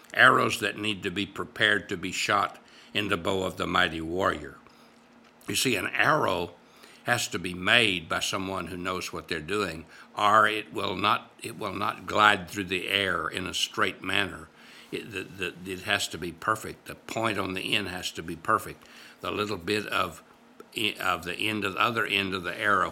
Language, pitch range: English, 90-105 Hz